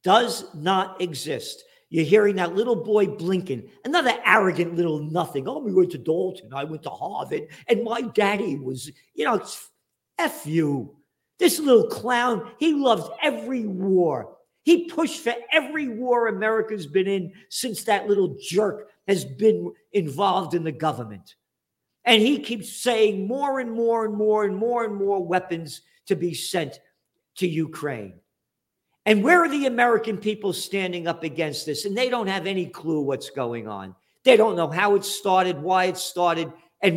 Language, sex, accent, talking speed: English, male, American, 165 wpm